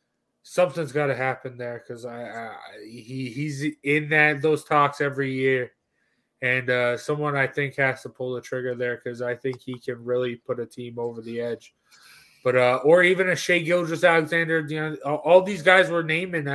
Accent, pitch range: American, 120-150 Hz